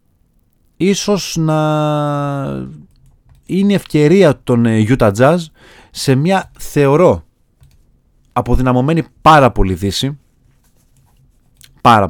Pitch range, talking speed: 100-140 Hz, 75 wpm